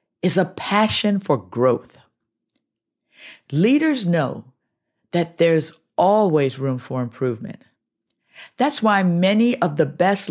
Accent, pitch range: American, 140-195 Hz